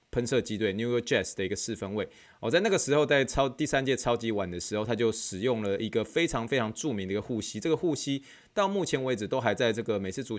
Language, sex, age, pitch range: Chinese, male, 20-39, 105-145 Hz